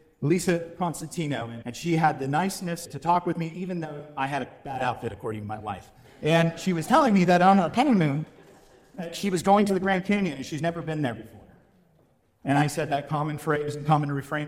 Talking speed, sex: 225 wpm, male